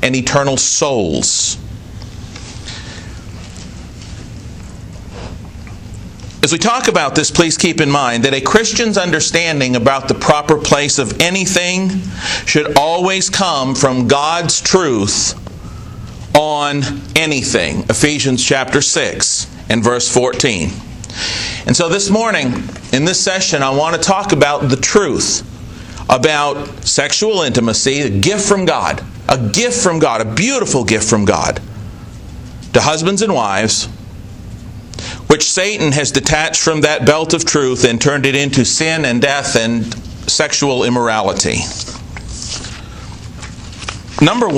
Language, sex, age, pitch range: English, male, 50-69, 110-155 Hz